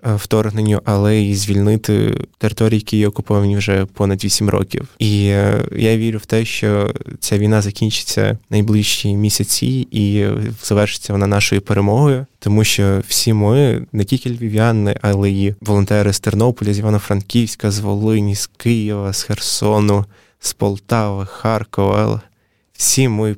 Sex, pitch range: male, 105-115 Hz